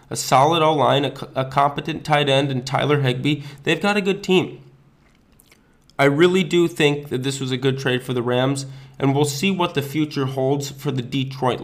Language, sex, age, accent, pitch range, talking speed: English, male, 20-39, American, 135-155 Hz, 200 wpm